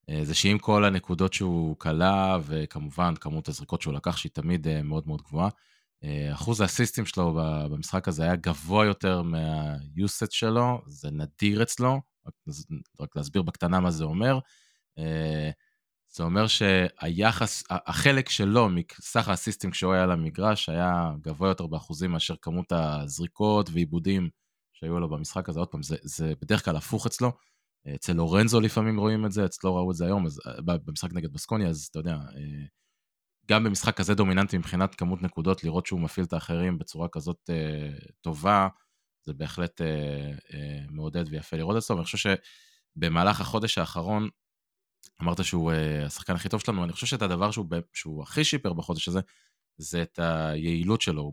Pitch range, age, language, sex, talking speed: 80-105 Hz, 20-39, Hebrew, male, 150 wpm